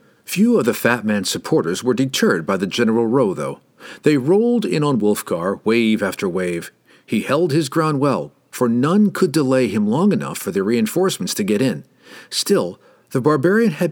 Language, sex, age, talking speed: English, male, 50-69, 185 wpm